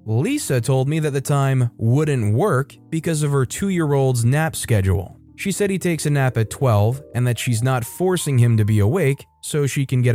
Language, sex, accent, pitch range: English, male, American, 115-155 Hz